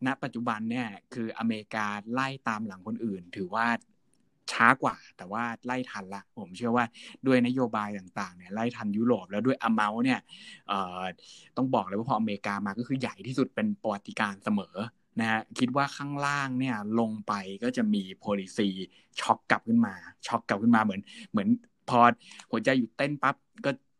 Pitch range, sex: 105-135 Hz, male